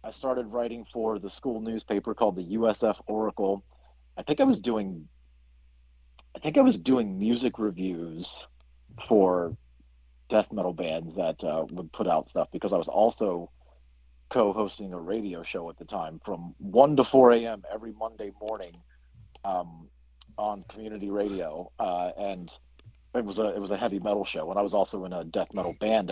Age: 40-59